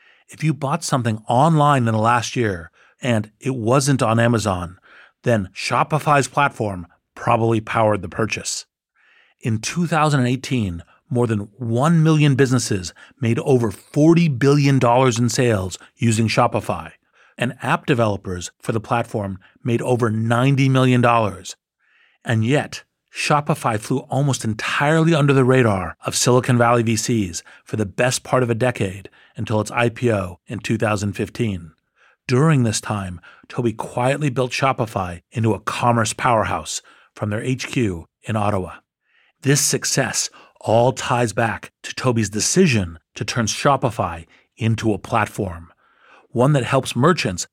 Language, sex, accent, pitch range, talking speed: English, male, American, 105-130 Hz, 135 wpm